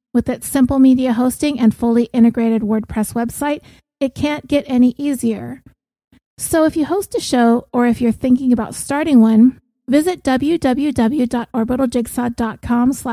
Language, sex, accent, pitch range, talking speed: English, female, American, 220-255 Hz, 135 wpm